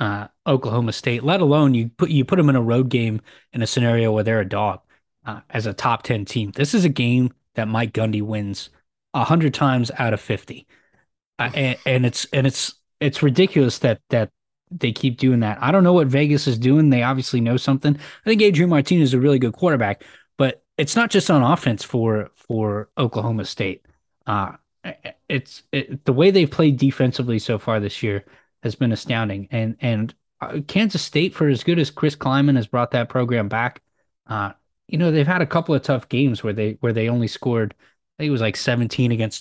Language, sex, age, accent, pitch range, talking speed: English, male, 20-39, American, 115-145 Hz, 210 wpm